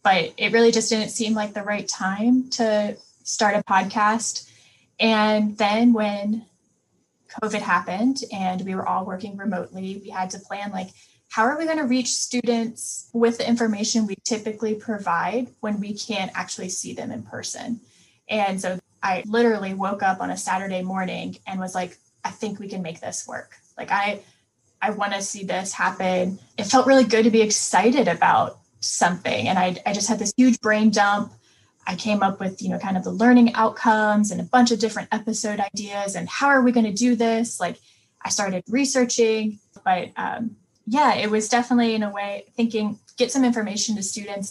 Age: 10-29